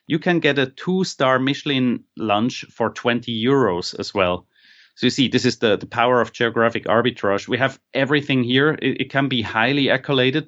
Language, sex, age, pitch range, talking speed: English, male, 30-49, 120-160 Hz, 190 wpm